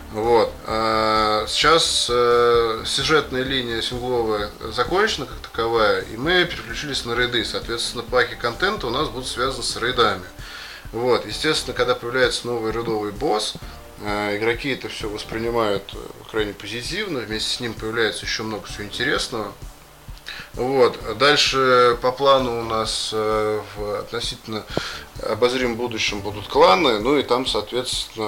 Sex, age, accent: male, 20-39, native